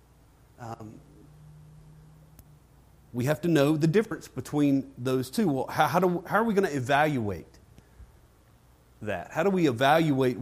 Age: 40-59